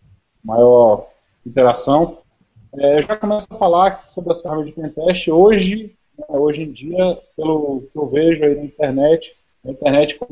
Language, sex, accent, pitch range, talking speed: Portuguese, male, Brazilian, 140-180 Hz, 165 wpm